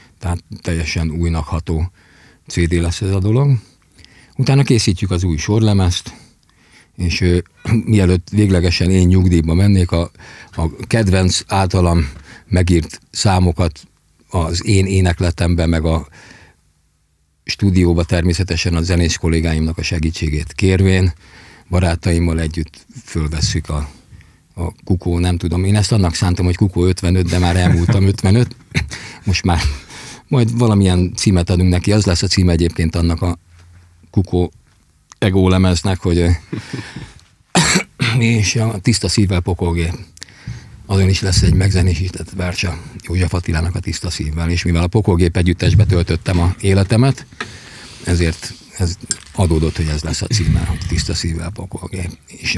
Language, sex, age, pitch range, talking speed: Hungarian, male, 50-69, 85-100 Hz, 130 wpm